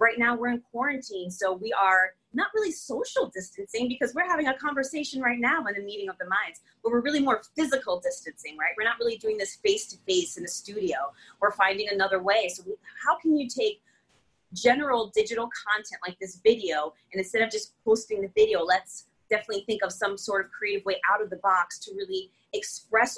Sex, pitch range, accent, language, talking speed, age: female, 190-265 Hz, American, English, 210 wpm, 30-49